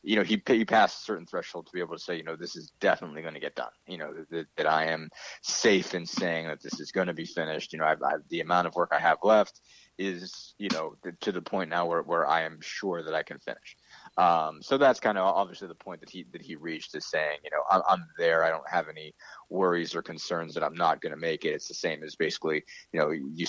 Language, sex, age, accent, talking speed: English, male, 30-49, American, 275 wpm